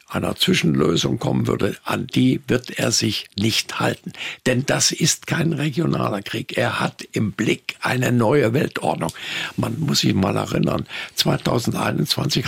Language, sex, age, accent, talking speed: German, male, 60-79, German, 145 wpm